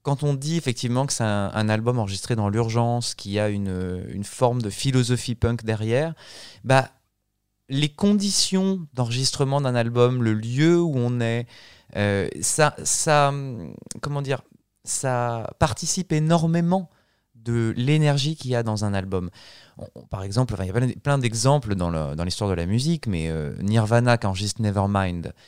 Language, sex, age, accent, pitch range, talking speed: French, male, 20-39, French, 100-130 Hz, 165 wpm